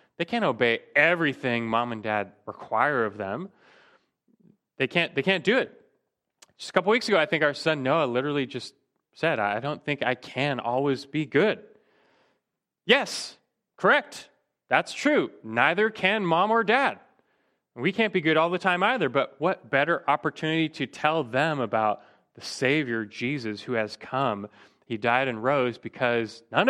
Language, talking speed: English, 165 wpm